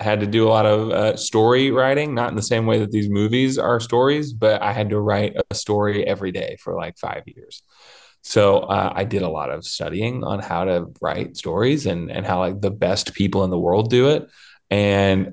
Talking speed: 225 wpm